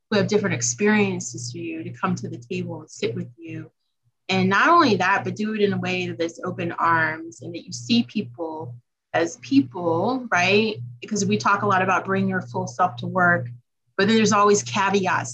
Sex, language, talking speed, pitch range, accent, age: female, English, 200 wpm, 120-190 Hz, American, 30-49